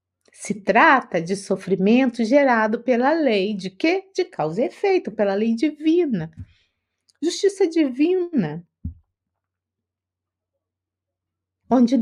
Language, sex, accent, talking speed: Portuguese, female, Brazilian, 95 wpm